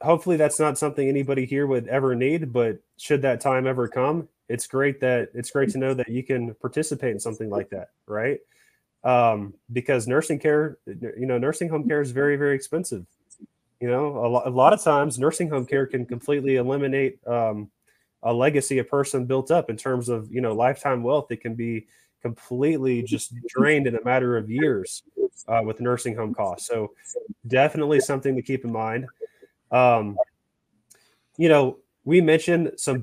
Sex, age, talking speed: male, 20-39, 180 wpm